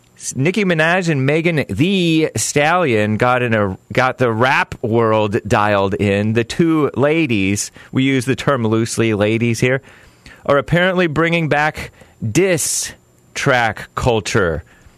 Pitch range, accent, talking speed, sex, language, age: 105-140 Hz, American, 130 wpm, male, English, 30-49